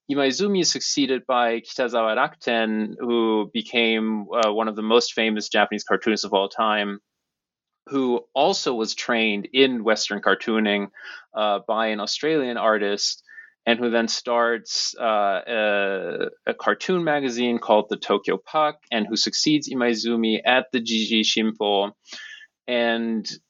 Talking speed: 135 wpm